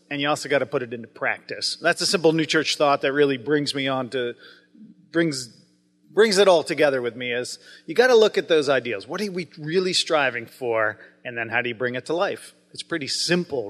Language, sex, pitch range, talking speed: English, male, 130-185 Hz, 235 wpm